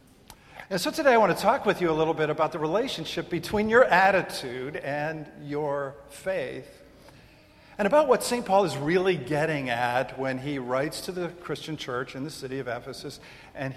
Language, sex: English, male